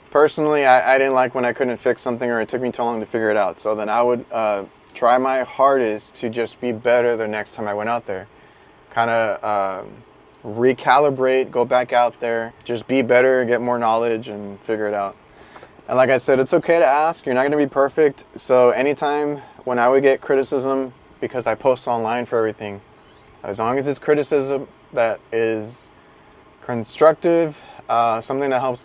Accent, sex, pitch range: American, male, 115-135 Hz